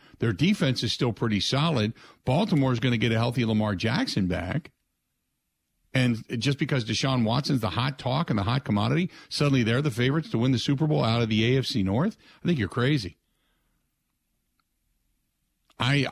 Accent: American